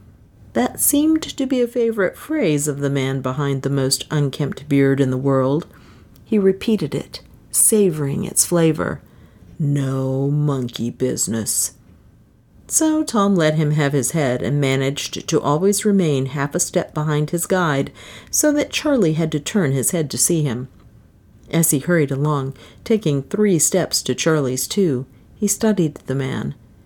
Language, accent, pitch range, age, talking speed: English, American, 140-190 Hz, 50-69, 155 wpm